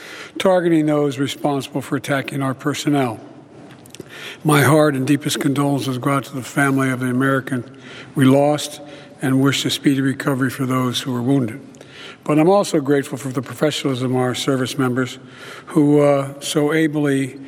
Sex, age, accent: male, 60-79, American